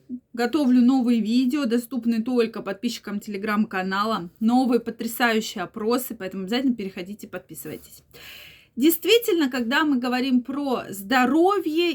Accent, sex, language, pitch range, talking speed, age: native, female, Russian, 235-305 Hz, 100 wpm, 20-39